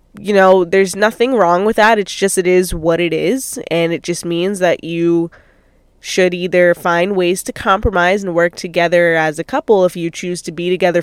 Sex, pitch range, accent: female, 170-210 Hz, American